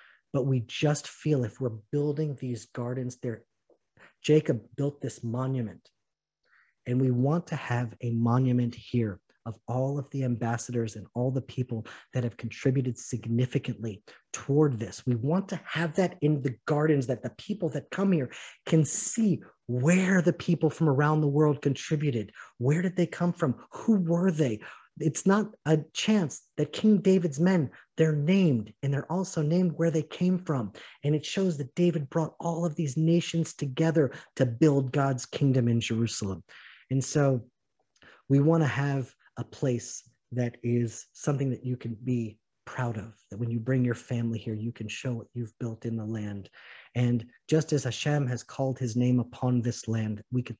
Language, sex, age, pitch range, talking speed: English, male, 30-49, 115-155 Hz, 180 wpm